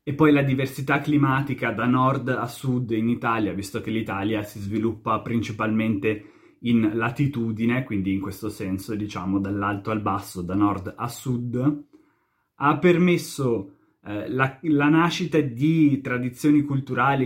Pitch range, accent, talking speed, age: 110-130 Hz, native, 140 wpm, 20-39